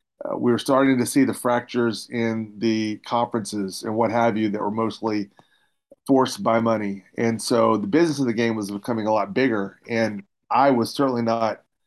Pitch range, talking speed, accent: 110-125 Hz, 185 wpm, American